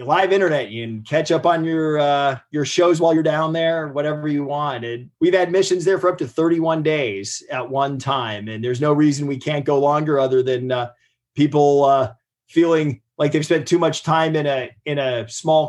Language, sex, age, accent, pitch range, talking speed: English, male, 30-49, American, 130-155 Hz, 215 wpm